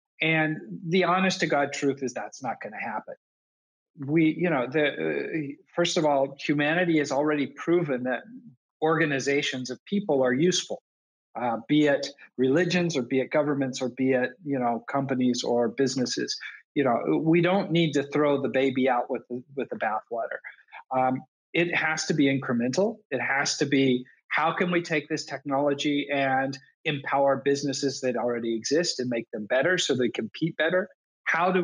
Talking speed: 175 wpm